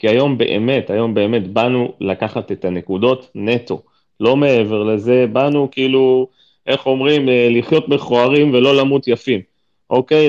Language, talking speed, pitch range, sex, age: Hebrew, 140 wpm, 105-130 Hz, male, 30-49